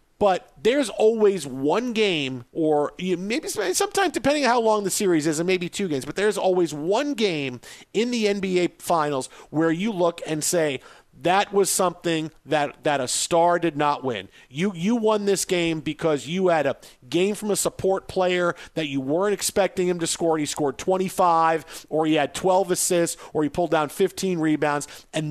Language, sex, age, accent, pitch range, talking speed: English, male, 40-59, American, 160-195 Hz, 185 wpm